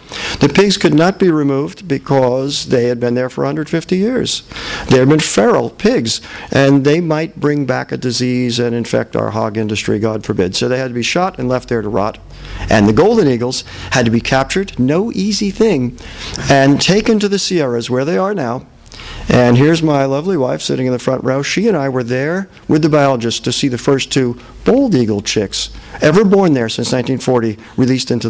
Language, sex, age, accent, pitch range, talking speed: English, male, 50-69, American, 110-150 Hz, 205 wpm